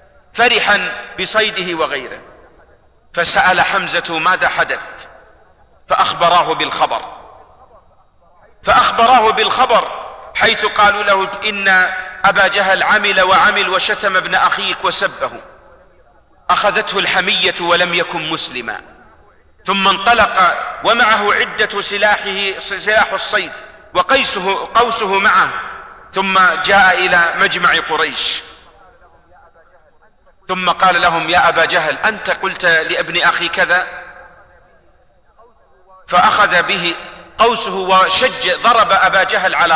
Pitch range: 180-210 Hz